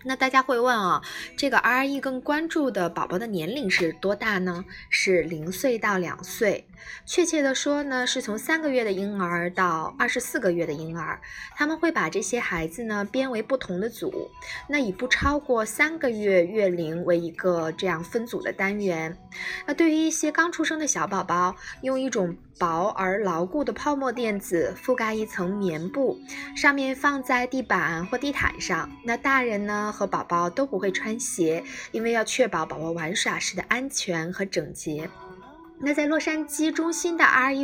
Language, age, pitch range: Chinese, 20-39, 185-290 Hz